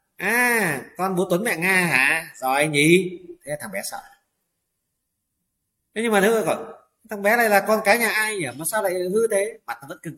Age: 30-49